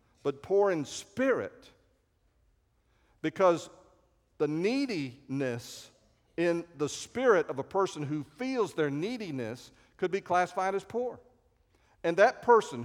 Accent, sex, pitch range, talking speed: American, male, 145-235 Hz, 115 wpm